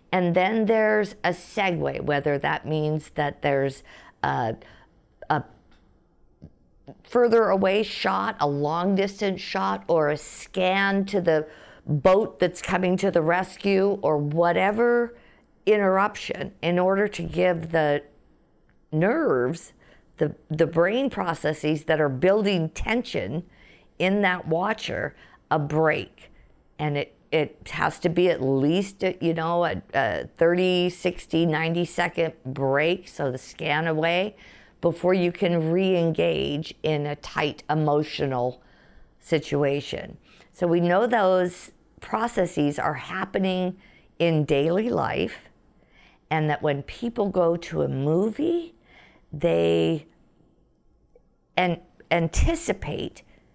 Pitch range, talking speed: 150-190 Hz, 115 wpm